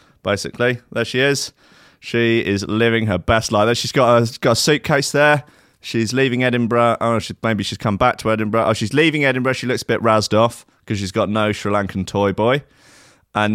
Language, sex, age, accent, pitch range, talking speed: English, male, 20-39, British, 105-130 Hz, 215 wpm